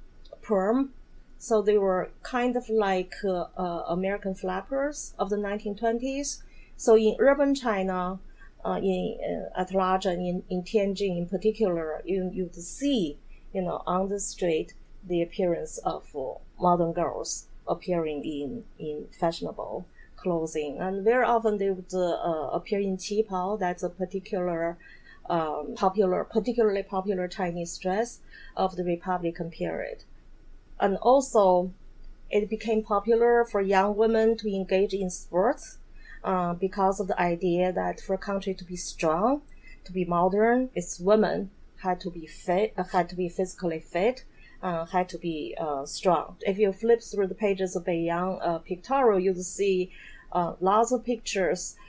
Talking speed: 150 wpm